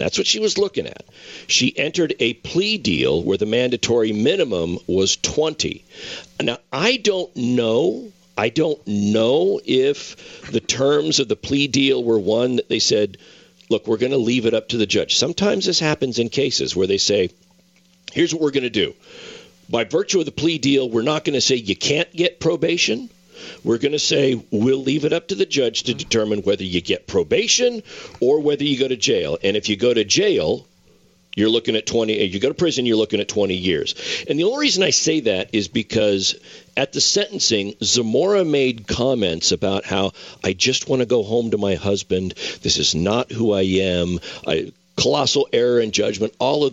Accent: American